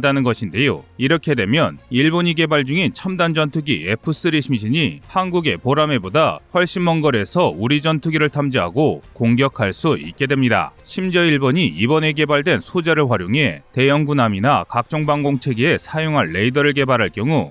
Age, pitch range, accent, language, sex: 30-49, 125-155 Hz, native, Korean, male